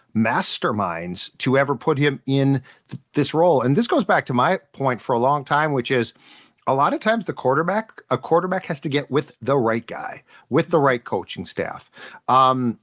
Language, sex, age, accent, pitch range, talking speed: English, male, 40-59, American, 125-155 Hz, 200 wpm